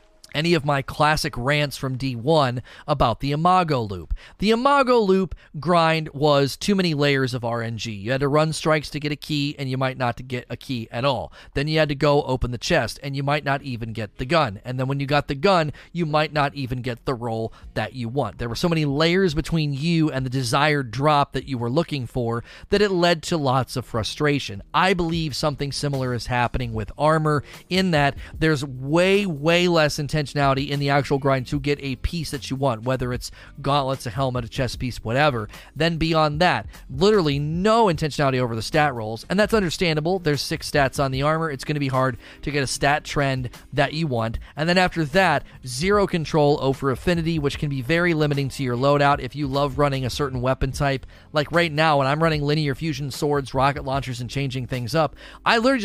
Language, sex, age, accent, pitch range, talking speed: English, male, 30-49, American, 130-160 Hz, 220 wpm